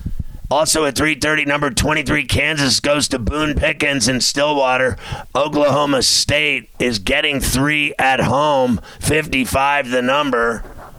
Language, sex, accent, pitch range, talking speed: English, male, American, 130-145 Hz, 120 wpm